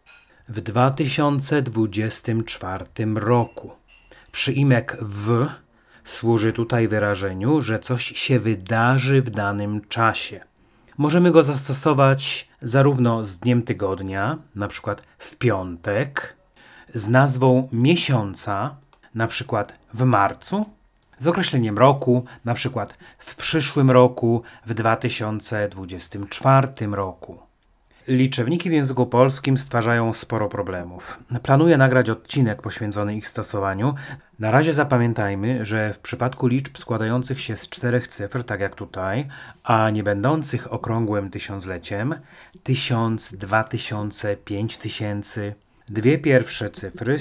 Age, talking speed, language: 30-49, 110 wpm, Polish